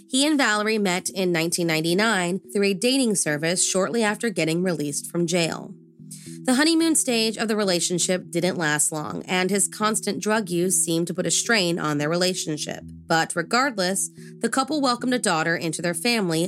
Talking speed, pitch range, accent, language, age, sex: 175 wpm, 165-205 Hz, American, English, 30-49, female